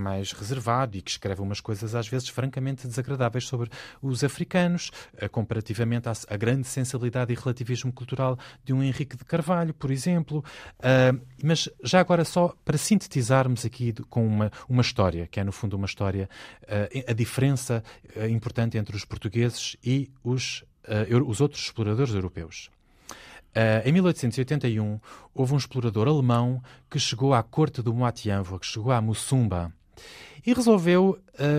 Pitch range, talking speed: 110-135 Hz, 145 wpm